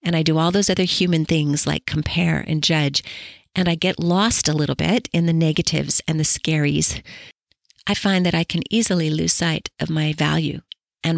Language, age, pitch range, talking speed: English, 40-59, 155-190 Hz, 200 wpm